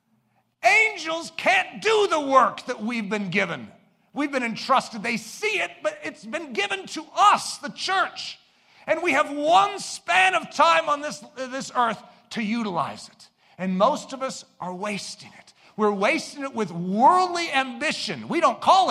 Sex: male